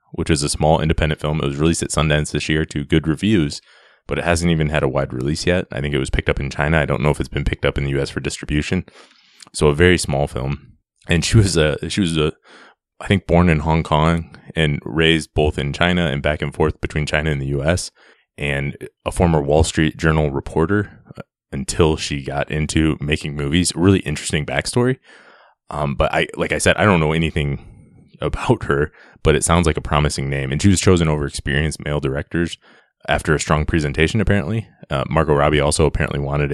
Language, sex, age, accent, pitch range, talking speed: English, male, 20-39, American, 70-85 Hz, 215 wpm